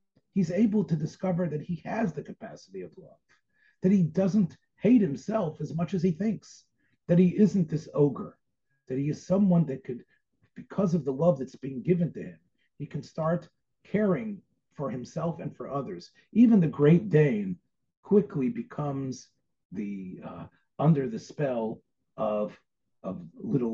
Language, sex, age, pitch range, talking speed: English, male, 40-59, 135-190 Hz, 160 wpm